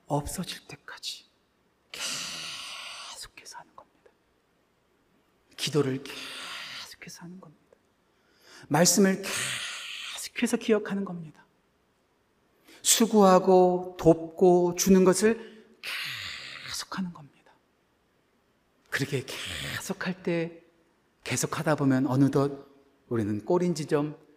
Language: Korean